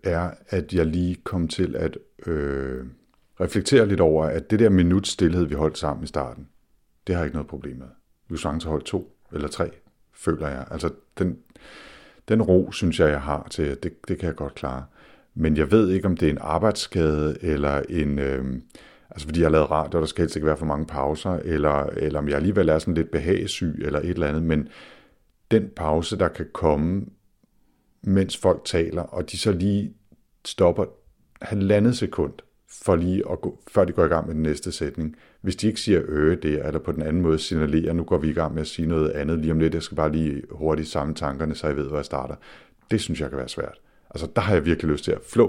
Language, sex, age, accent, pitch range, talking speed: Danish, male, 50-69, native, 75-90 Hz, 230 wpm